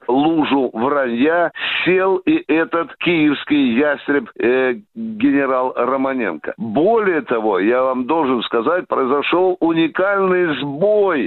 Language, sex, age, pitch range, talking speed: Russian, male, 60-79, 145-185 Hz, 100 wpm